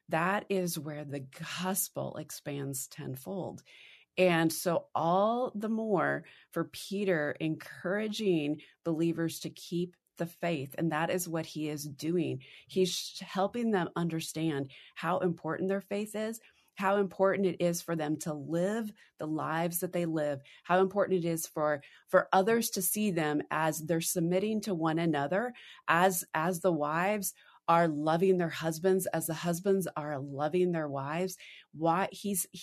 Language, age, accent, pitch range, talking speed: English, 30-49, American, 160-200 Hz, 150 wpm